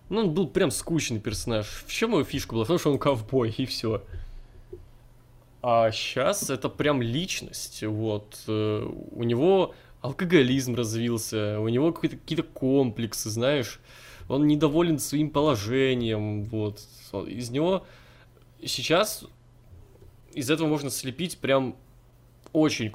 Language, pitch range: Russian, 110-150 Hz